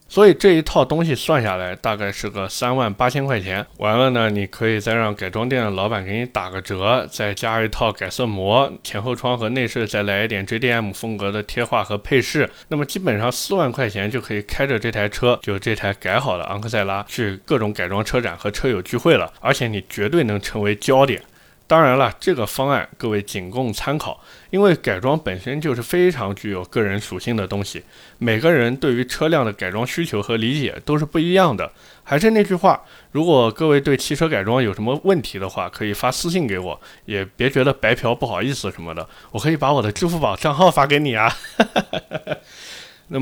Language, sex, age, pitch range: Chinese, male, 20-39, 105-140 Hz